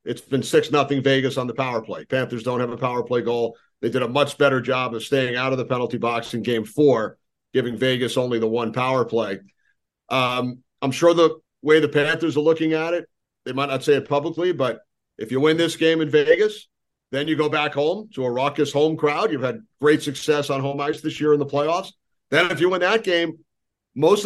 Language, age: English, 40-59